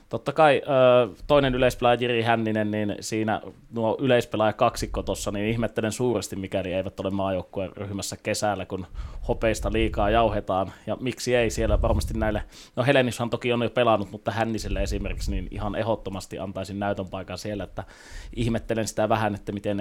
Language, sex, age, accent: Finnish, male, 20-39, native